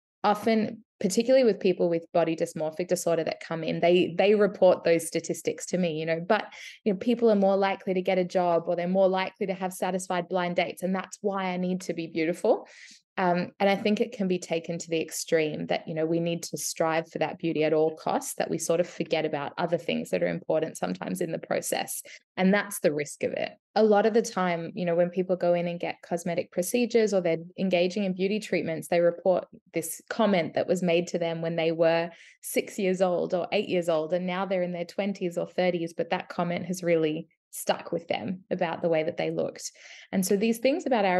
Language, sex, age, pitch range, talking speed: English, female, 20-39, 170-200 Hz, 235 wpm